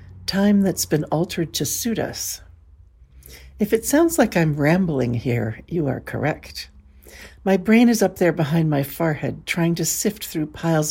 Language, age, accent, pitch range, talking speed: English, 60-79, American, 120-180 Hz, 165 wpm